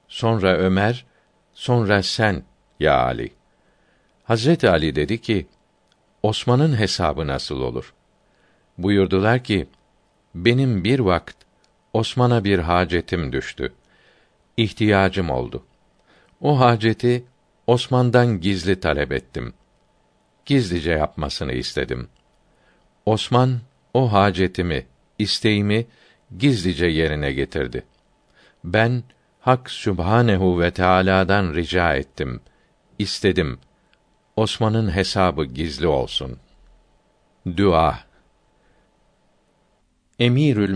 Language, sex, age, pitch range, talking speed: Turkish, male, 50-69, 85-110 Hz, 80 wpm